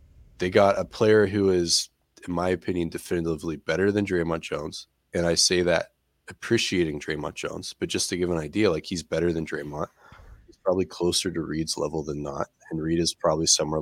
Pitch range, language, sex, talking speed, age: 80-95 Hz, English, male, 195 wpm, 20-39